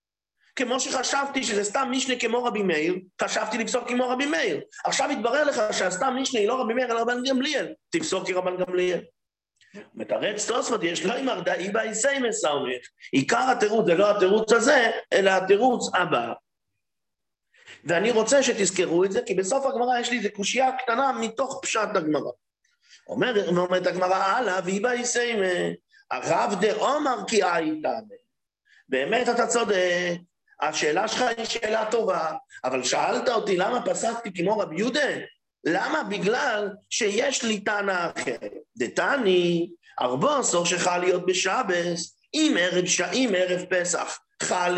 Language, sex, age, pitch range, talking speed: English, male, 50-69, 180-250 Hz, 140 wpm